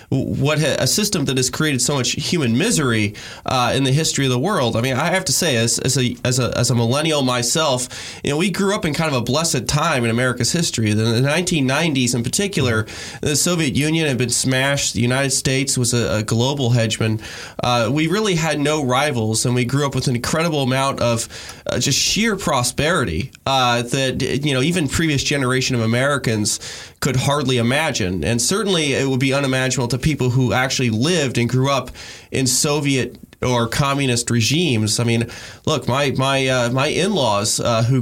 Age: 20-39